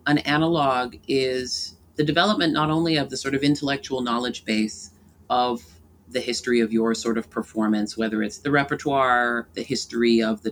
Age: 30-49